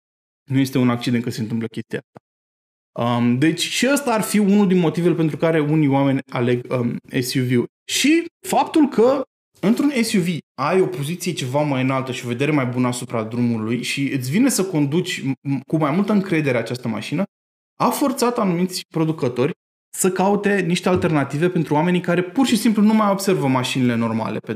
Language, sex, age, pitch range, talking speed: Romanian, male, 20-39, 130-195 Hz, 180 wpm